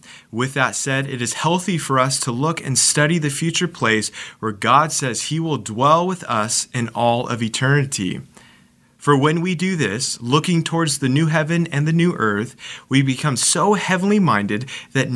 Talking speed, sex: 185 wpm, male